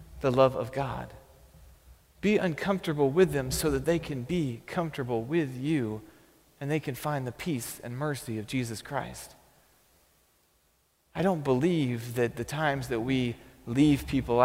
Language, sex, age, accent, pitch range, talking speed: English, male, 40-59, American, 110-140 Hz, 155 wpm